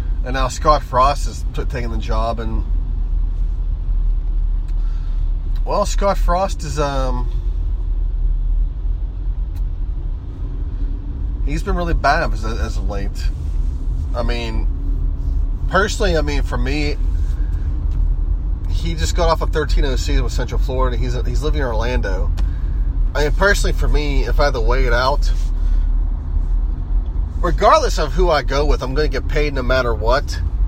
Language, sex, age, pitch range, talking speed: English, male, 20-39, 70-85 Hz, 145 wpm